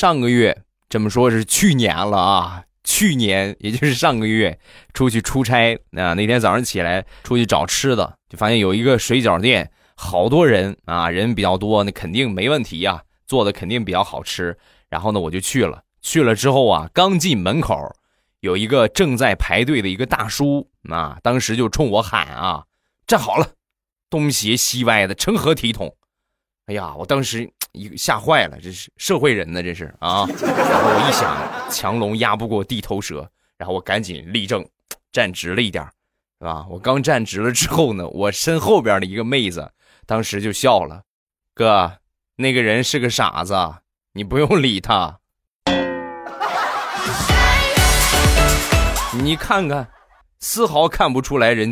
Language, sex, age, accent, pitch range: Chinese, male, 20-39, native, 90-125 Hz